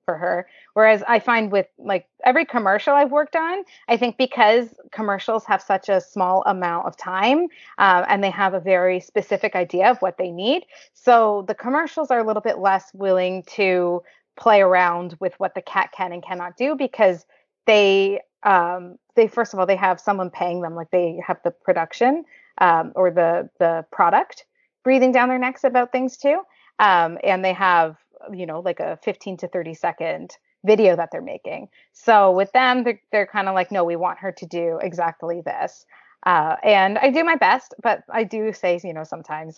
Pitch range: 180-235 Hz